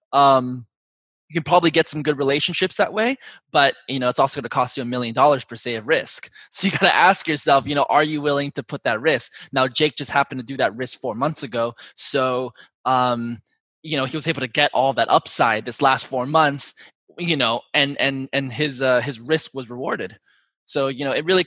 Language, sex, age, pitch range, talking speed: English, male, 20-39, 125-145 Hz, 235 wpm